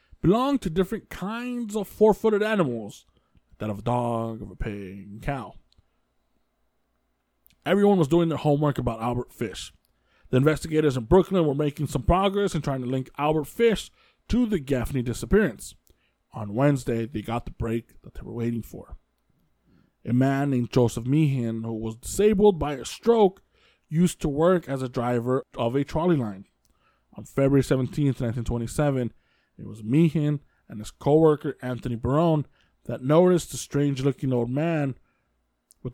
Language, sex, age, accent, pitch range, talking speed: English, male, 20-39, American, 120-160 Hz, 160 wpm